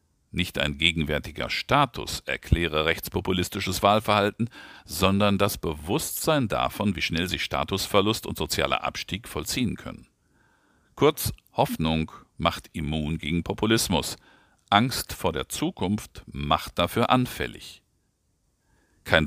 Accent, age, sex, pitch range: German, 50-69, male, 80-105 Hz